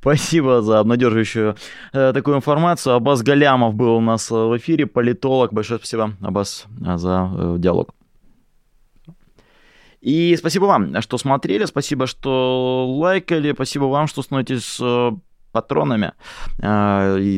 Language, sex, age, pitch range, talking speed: Russian, male, 20-39, 100-125 Hz, 125 wpm